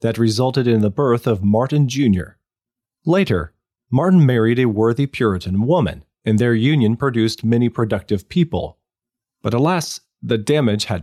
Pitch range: 105-130 Hz